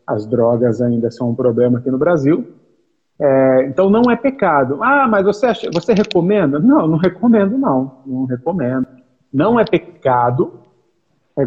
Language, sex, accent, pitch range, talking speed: Portuguese, male, Brazilian, 135-200 Hz, 155 wpm